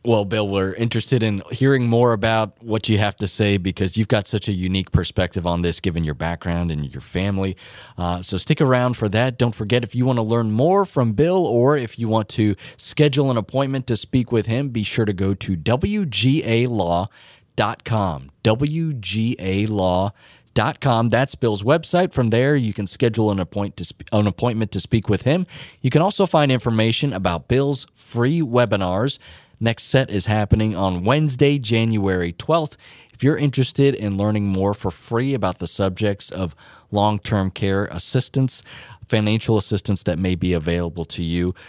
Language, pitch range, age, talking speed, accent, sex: English, 95-130 Hz, 30-49, 175 wpm, American, male